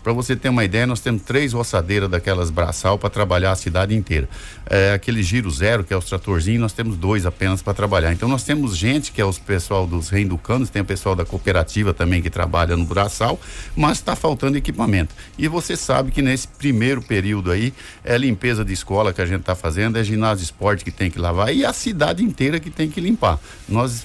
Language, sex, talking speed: Portuguese, male, 215 wpm